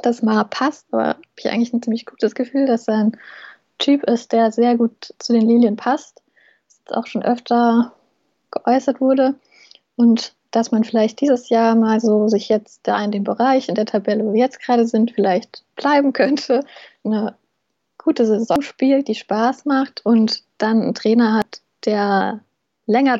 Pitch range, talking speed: 215-240 Hz, 180 wpm